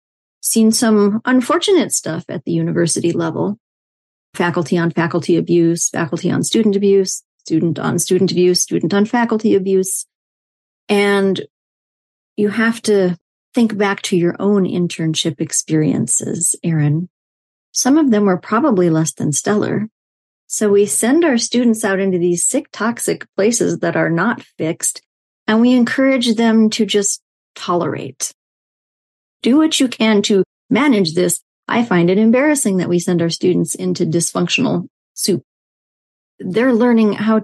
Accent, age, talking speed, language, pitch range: American, 40-59, 140 wpm, English, 175-225 Hz